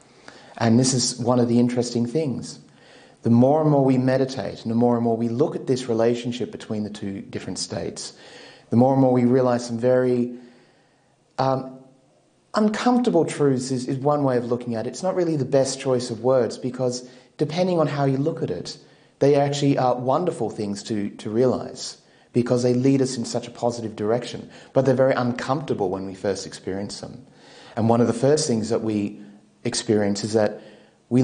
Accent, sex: Australian, male